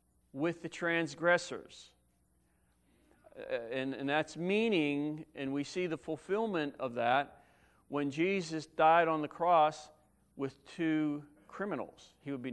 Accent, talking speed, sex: American, 130 wpm, male